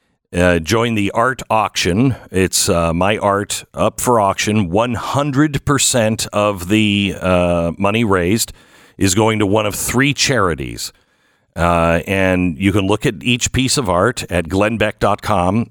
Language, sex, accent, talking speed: English, male, American, 140 wpm